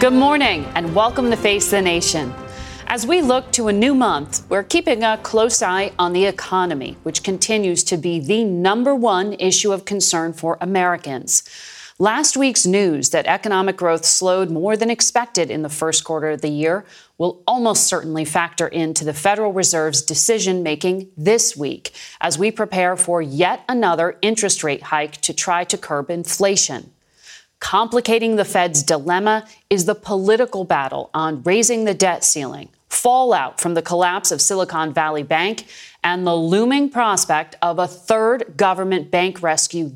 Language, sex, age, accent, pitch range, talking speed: English, female, 40-59, American, 165-215 Hz, 160 wpm